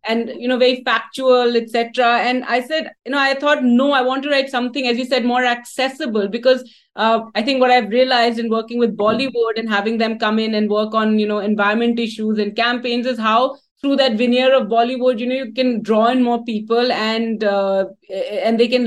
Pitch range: 215-250 Hz